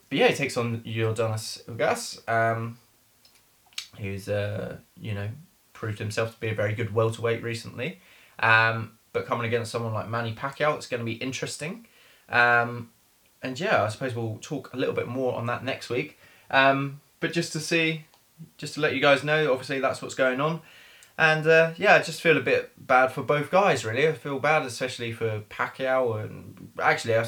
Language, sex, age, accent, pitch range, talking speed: English, male, 20-39, British, 110-140 Hz, 190 wpm